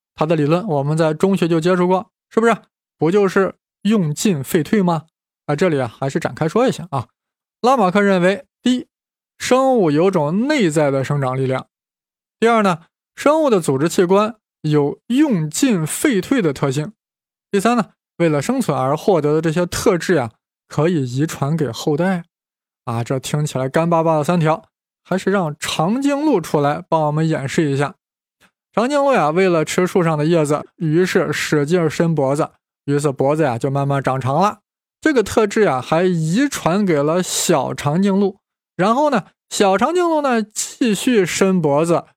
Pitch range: 145-200 Hz